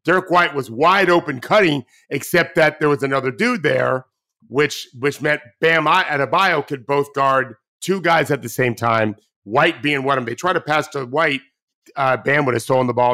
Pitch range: 120-150 Hz